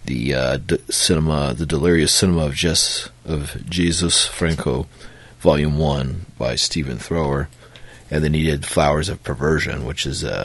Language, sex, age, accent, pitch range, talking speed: English, male, 30-49, American, 75-95 Hz, 155 wpm